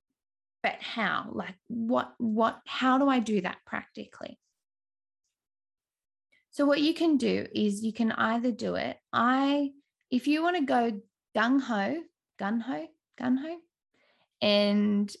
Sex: female